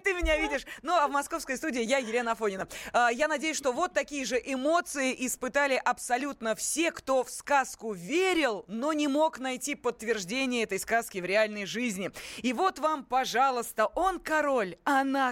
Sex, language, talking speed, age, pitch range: female, Russian, 170 wpm, 20-39, 215-290 Hz